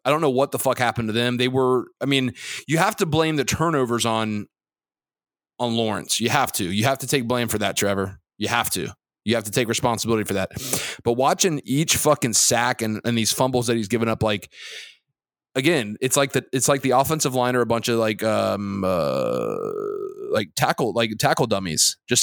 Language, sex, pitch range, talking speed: English, male, 115-140 Hz, 215 wpm